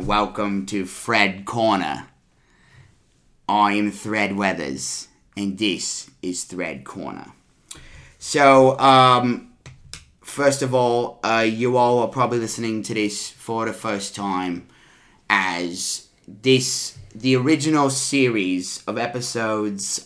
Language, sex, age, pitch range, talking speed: English, male, 30-49, 100-130 Hz, 110 wpm